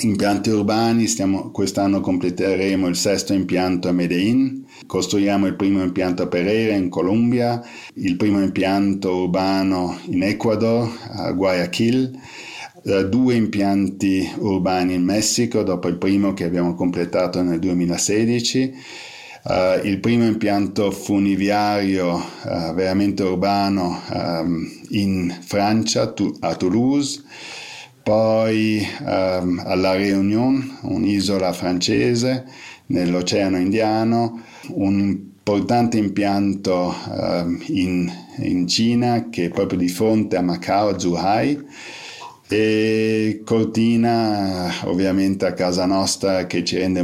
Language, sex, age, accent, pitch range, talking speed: Italian, male, 50-69, native, 90-110 Hz, 105 wpm